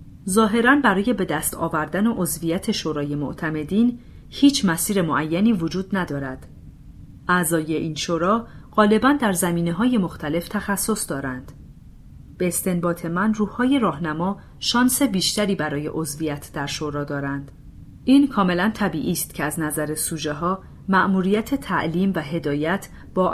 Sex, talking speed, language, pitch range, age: female, 125 wpm, Persian, 155-210 Hz, 40-59